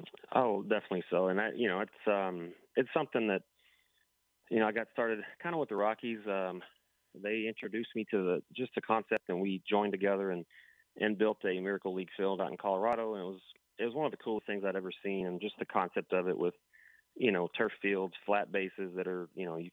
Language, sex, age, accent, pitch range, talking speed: English, male, 30-49, American, 95-110 Hz, 230 wpm